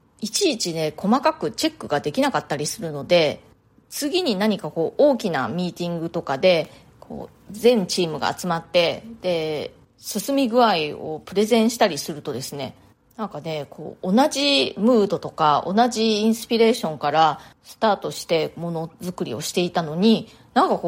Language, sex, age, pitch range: Japanese, female, 30-49, 155-230 Hz